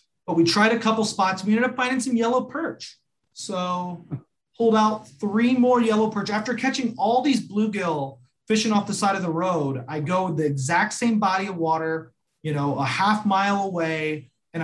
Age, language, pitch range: 30-49, English, 145-210 Hz